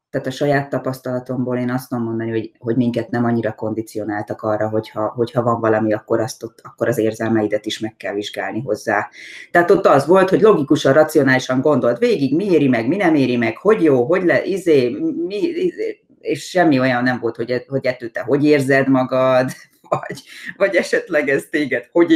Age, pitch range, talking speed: 30-49, 120-155 Hz, 190 wpm